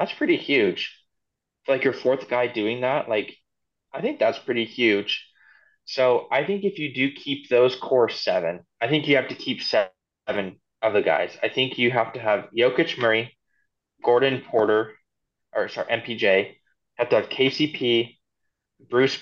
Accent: American